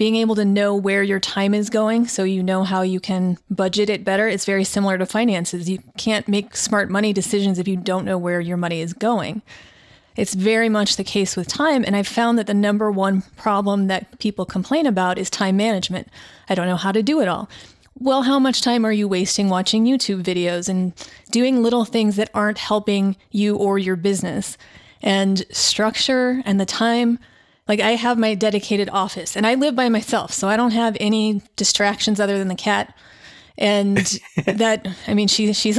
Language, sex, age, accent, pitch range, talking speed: English, female, 30-49, American, 195-220 Hz, 205 wpm